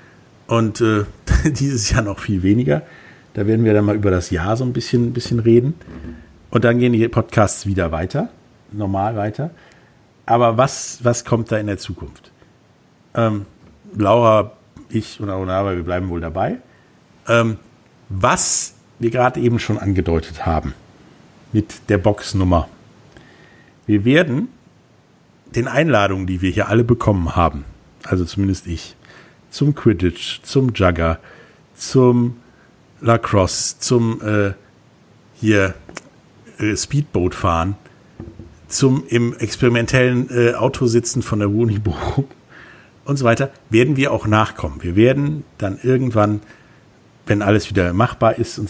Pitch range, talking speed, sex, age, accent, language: 100-120 Hz, 135 wpm, male, 50-69, German, German